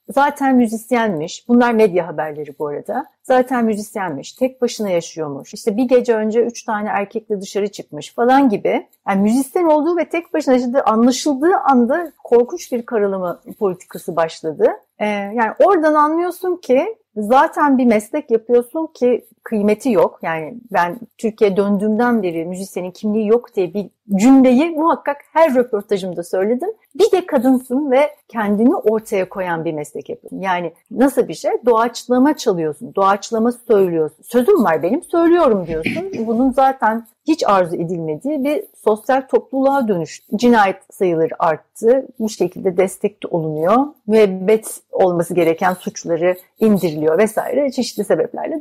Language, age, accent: Turkish, 60-79, native